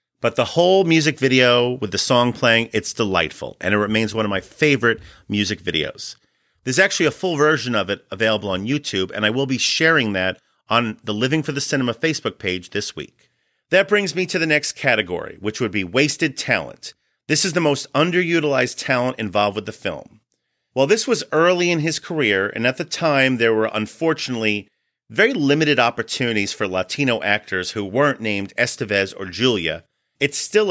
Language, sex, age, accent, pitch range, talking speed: English, male, 40-59, American, 110-155 Hz, 190 wpm